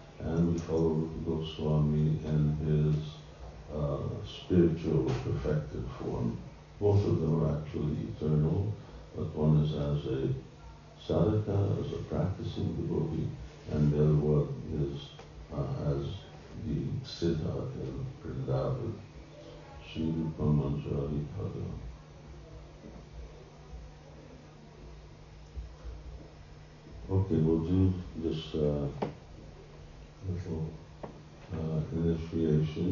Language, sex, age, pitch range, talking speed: English, male, 60-79, 75-85 Hz, 85 wpm